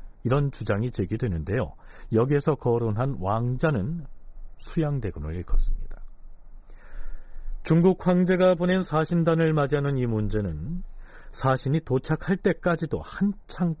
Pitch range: 110-165 Hz